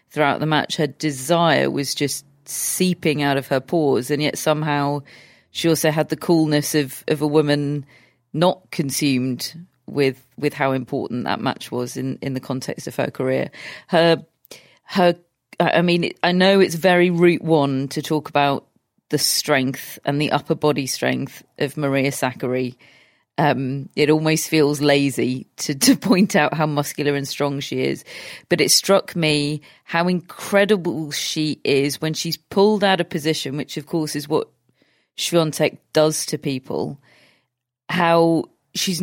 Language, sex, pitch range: English, female, 140-175 Hz